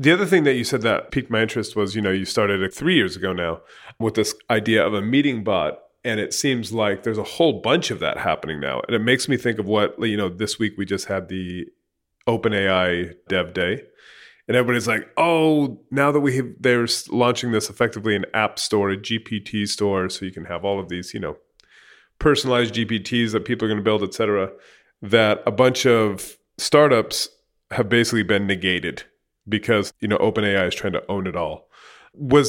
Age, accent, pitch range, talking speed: 30-49, American, 100-120 Hz, 210 wpm